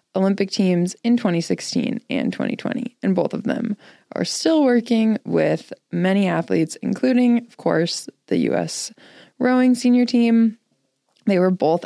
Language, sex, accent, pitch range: English, female, American, 165-220 Hz